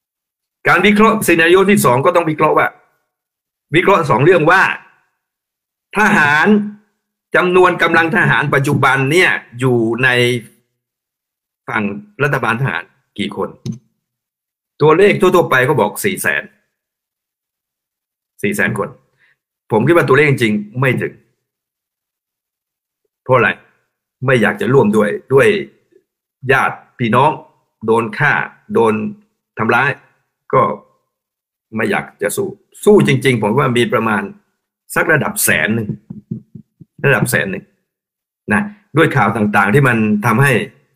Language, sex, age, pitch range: Thai, male, 60-79, 120-180 Hz